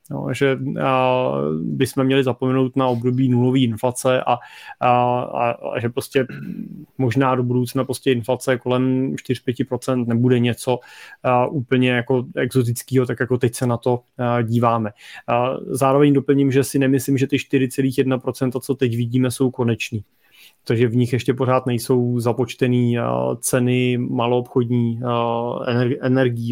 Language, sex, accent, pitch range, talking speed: Czech, male, native, 125-150 Hz, 135 wpm